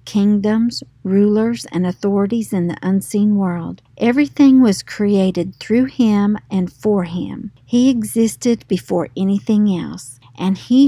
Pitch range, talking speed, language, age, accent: 180-225 Hz, 125 wpm, English, 50-69, American